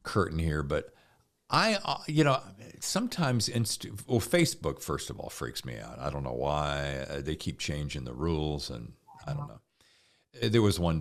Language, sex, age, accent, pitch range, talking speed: English, male, 50-69, American, 75-125 Hz, 185 wpm